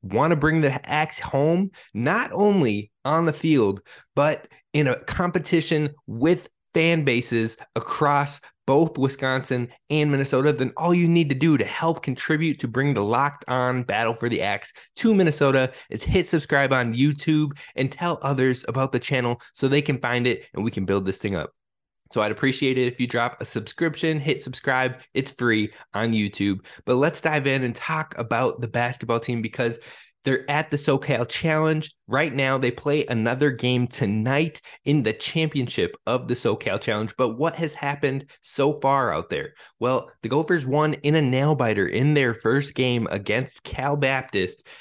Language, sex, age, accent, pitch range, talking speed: English, male, 20-39, American, 120-150 Hz, 180 wpm